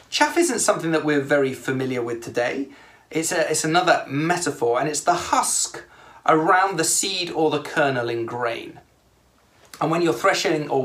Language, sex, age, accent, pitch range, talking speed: English, male, 30-49, British, 130-185 Hz, 170 wpm